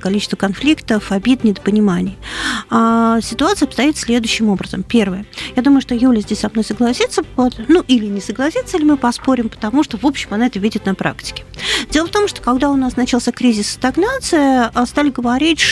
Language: Russian